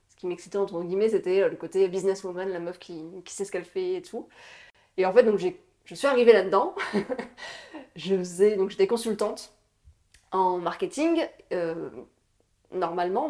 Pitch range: 175-215 Hz